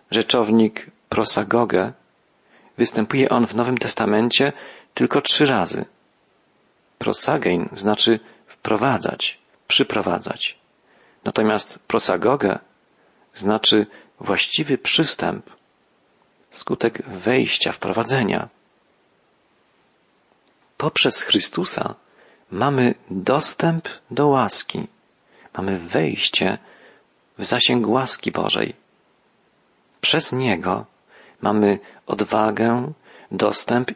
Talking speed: 70 wpm